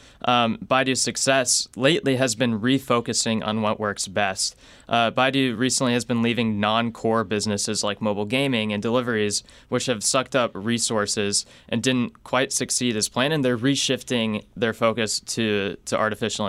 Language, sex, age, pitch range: English, male, 20-39, 105-125 Hz